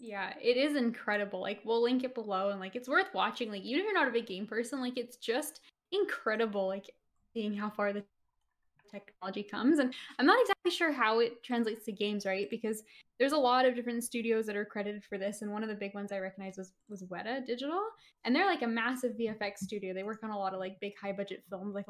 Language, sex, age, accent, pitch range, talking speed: English, female, 10-29, American, 200-250 Hz, 240 wpm